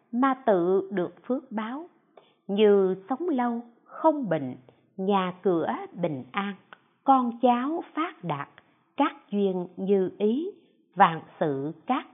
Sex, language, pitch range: female, Vietnamese, 180-265 Hz